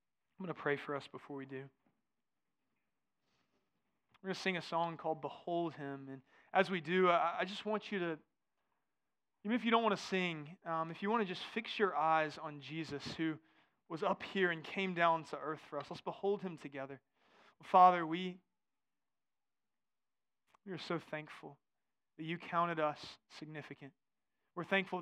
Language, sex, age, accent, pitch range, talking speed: English, male, 20-39, American, 155-185 Hz, 175 wpm